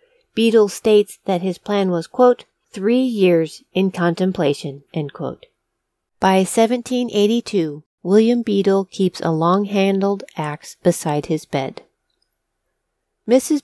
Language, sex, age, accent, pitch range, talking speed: English, female, 40-59, American, 175-225 Hz, 110 wpm